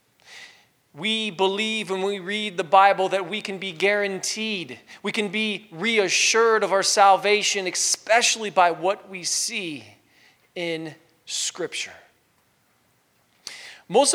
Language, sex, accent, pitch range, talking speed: English, male, American, 190-230 Hz, 115 wpm